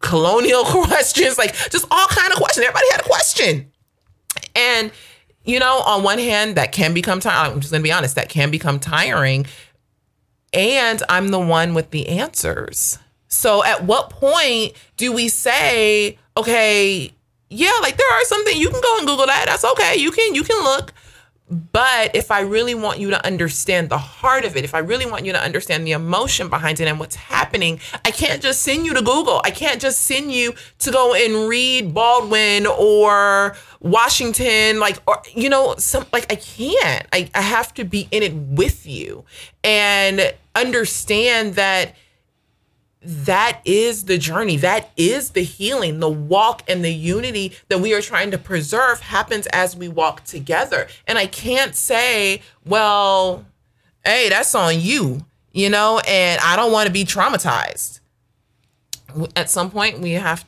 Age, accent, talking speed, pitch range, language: 30-49, American, 175 wpm, 160-235 Hz, English